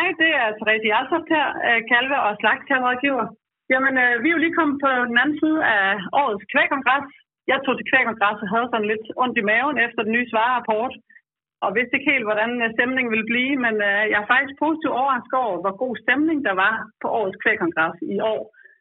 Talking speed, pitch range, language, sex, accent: 200 wpm, 215-270 Hz, Danish, female, native